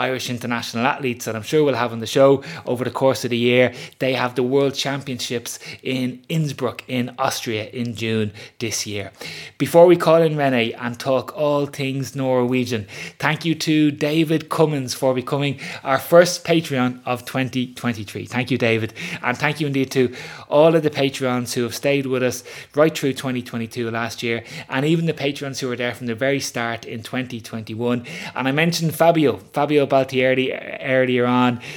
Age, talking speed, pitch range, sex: 20-39, 180 wpm, 115-140 Hz, male